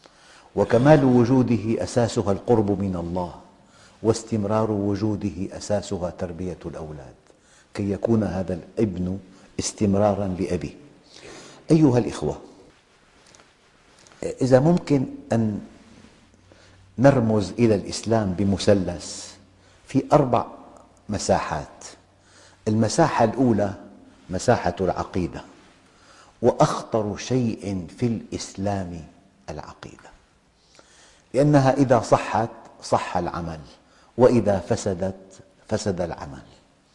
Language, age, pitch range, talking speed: English, 50-69, 95-120 Hz, 75 wpm